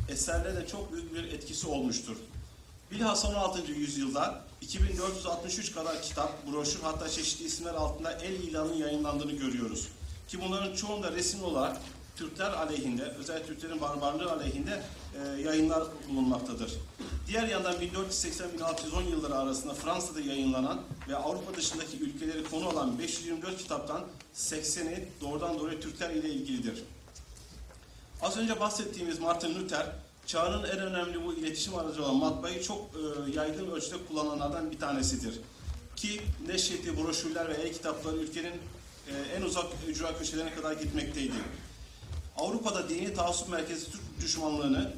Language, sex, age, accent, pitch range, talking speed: Turkish, male, 50-69, native, 150-185 Hz, 125 wpm